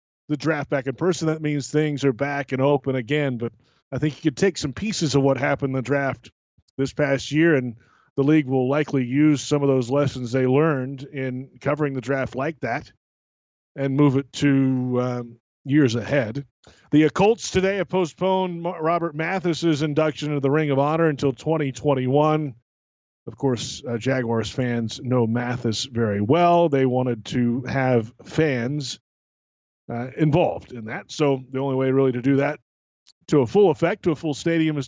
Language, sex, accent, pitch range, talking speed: English, male, American, 130-165 Hz, 180 wpm